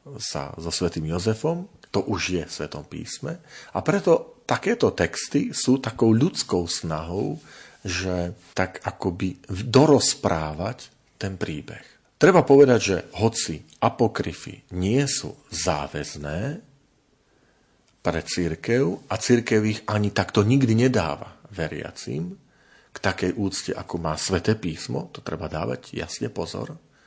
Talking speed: 120 wpm